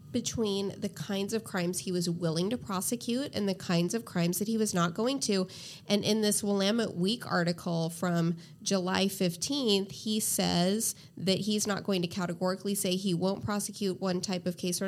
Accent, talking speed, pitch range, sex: American, 190 wpm, 180-220 Hz, female